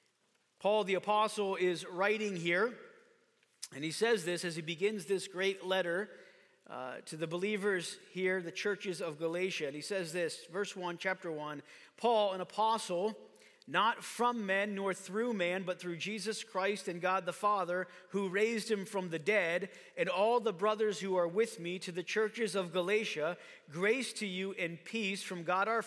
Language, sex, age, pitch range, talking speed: English, male, 40-59, 180-225 Hz, 180 wpm